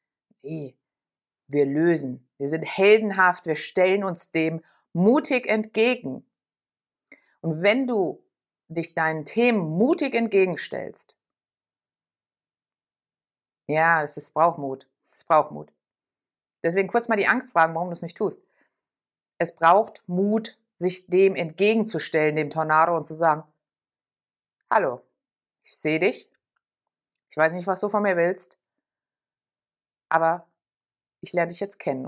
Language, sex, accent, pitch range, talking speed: German, female, German, 155-210 Hz, 125 wpm